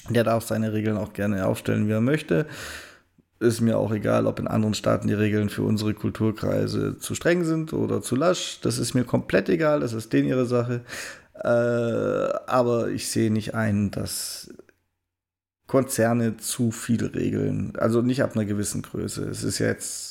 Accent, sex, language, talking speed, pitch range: German, male, German, 175 wpm, 105-125 Hz